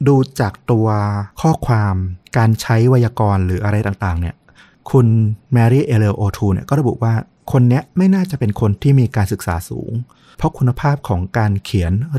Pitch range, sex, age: 100-125 Hz, male, 30-49